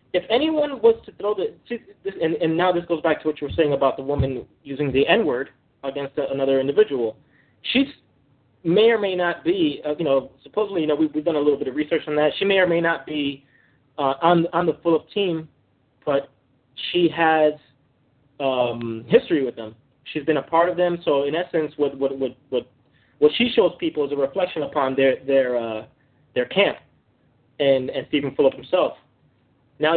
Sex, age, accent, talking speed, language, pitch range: male, 20-39, American, 205 wpm, English, 135-175 Hz